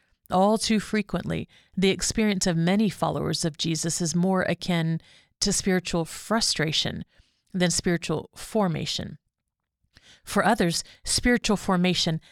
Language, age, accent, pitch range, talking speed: English, 40-59, American, 170-205 Hz, 110 wpm